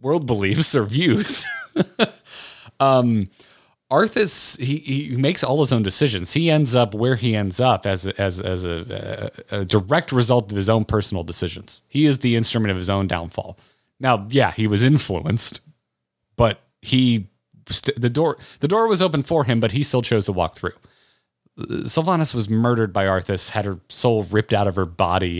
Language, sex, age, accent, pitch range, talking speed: English, male, 30-49, American, 95-125 Hz, 185 wpm